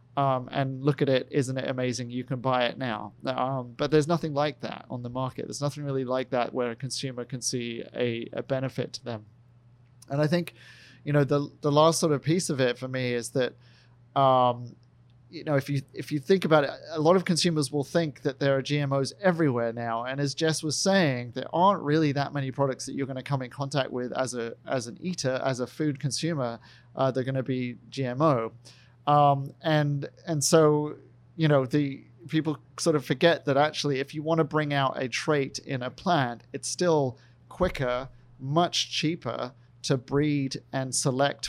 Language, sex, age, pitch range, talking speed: English, male, 30-49, 125-145 Hz, 205 wpm